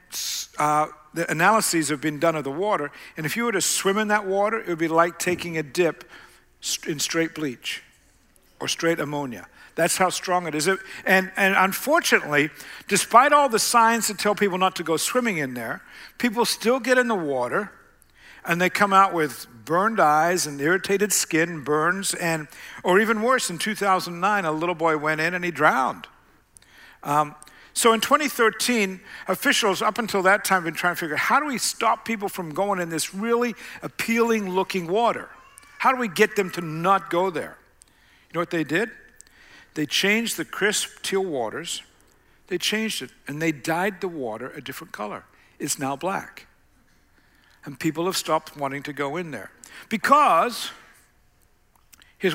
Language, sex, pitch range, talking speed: English, male, 160-215 Hz, 180 wpm